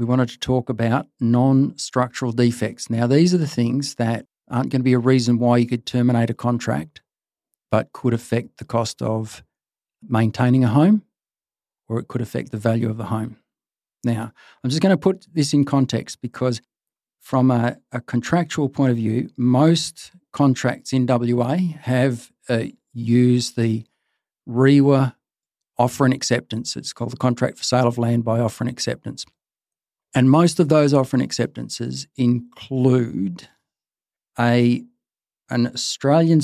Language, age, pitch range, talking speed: English, 50-69, 120-135 Hz, 155 wpm